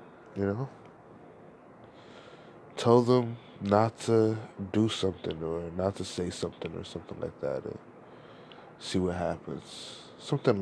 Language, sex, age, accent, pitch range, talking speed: English, male, 20-39, American, 95-125 Hz, 125 wpm